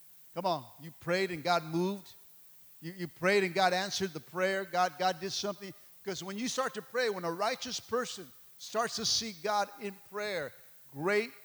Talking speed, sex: 190 wpm, male